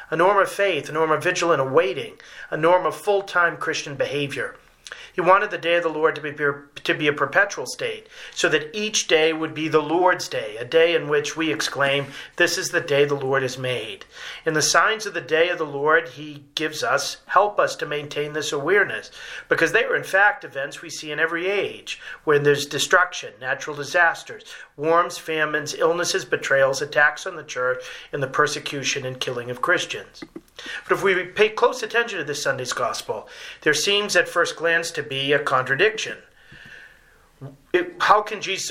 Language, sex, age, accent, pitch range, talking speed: English, male, 40-59, American, 150-195 Hz, 195 wpm